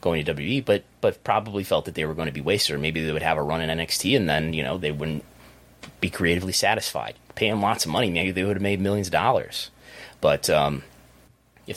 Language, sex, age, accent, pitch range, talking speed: English, male, 30-49, American, 70-95 Hz, 240 wpm